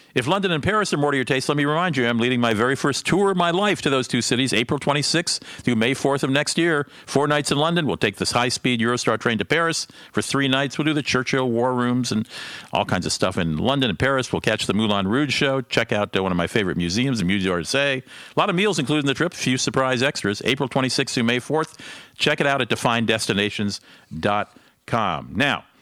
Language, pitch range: English, 105-145 Hz